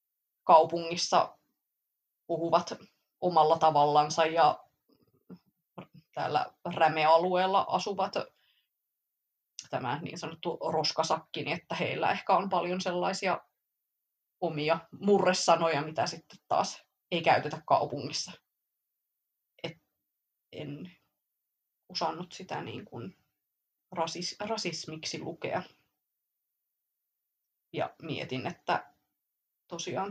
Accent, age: Finnish, 20-39